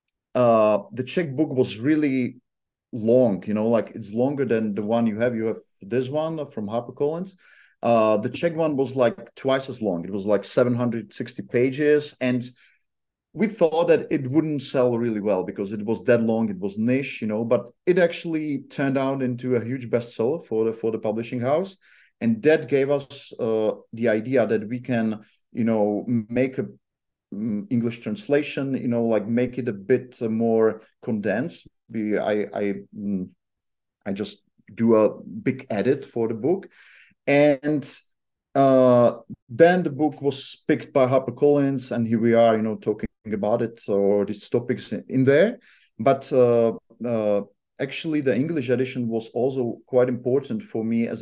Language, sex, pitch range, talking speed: English, male, 110-135 Hz, 170 wpm